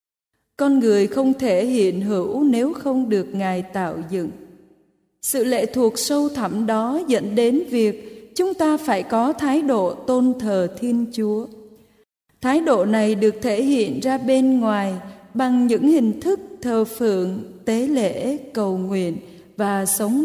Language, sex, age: Vietnamese, female, 20-39